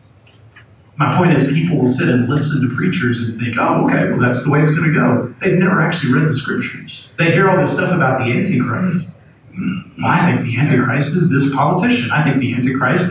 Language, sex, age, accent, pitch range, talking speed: English, male, 40-59, American, 125-150 Hz, 220 wpm